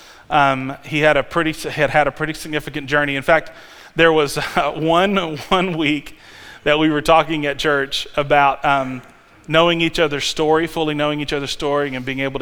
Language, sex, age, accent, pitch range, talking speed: English, male, 30-49, American, 145-185 Hz, 185 wpm